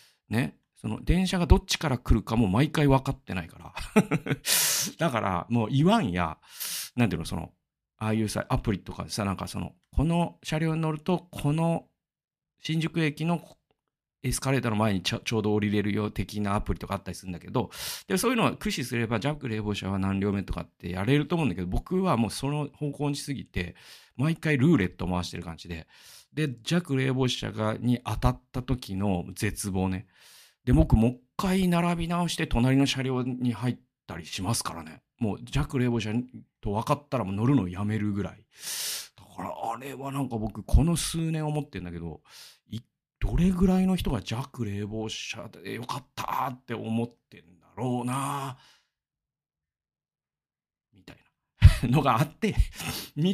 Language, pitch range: Japanese, 100-145 Hz